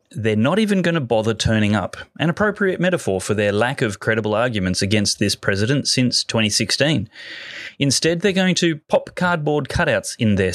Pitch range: 105-135 Hz